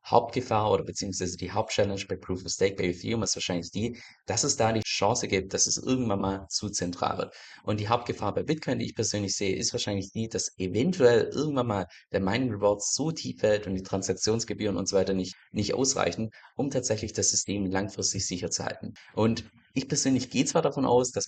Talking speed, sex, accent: 210 wpm, male, German